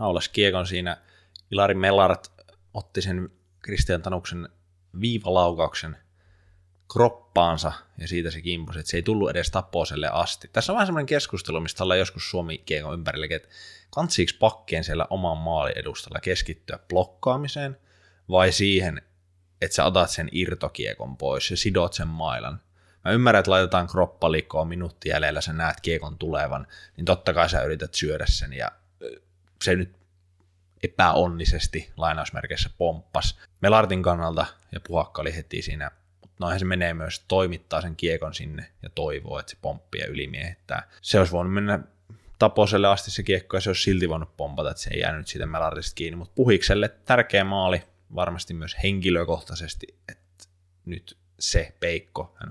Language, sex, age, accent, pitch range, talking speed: Finnish, male, 20-39, native, 85-95 Hz, 150 wpm